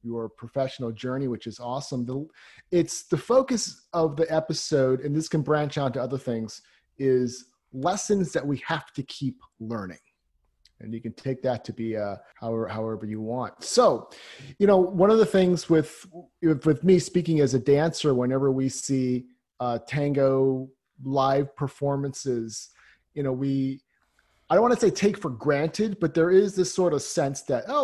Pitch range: 120-160 Hz